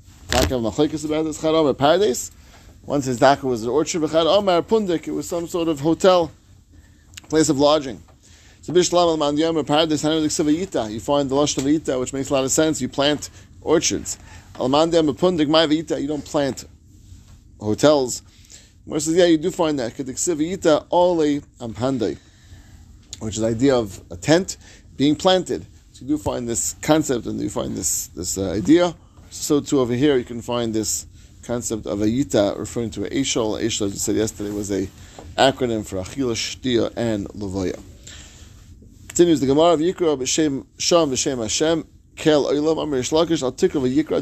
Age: 30-49